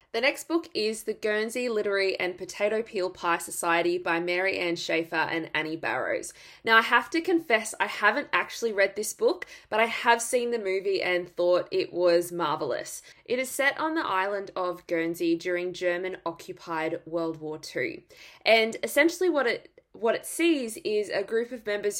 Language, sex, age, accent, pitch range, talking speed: English, female, 20-39, Australian, 185-240 Hz, 180 wpm